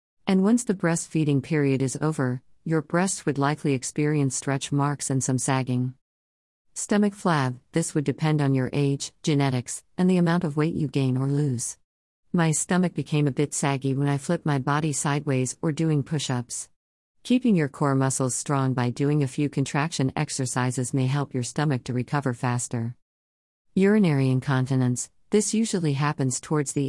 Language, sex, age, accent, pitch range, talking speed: English, female, 50-69, American, 130-155 Hz, 170 wpm